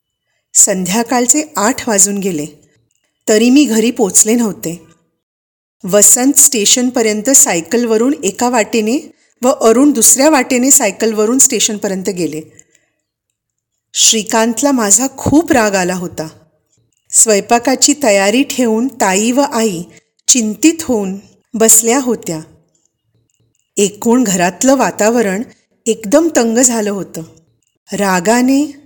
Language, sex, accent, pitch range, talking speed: Marathi, female, native, 175-250 Hz, 95 wpm